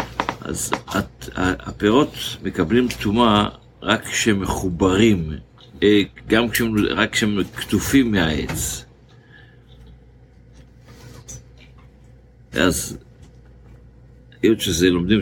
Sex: male